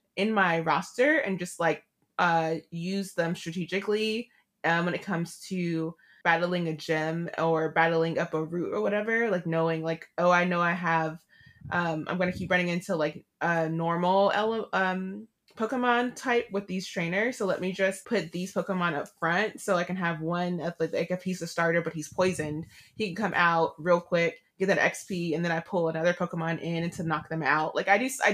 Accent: American